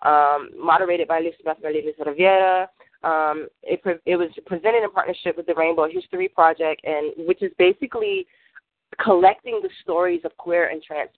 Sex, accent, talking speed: female, American, 150 wpm